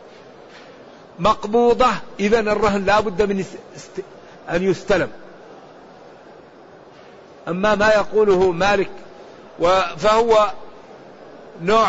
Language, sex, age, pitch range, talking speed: Arabic, male, 50-69, 210-245 Hz, 80 wpm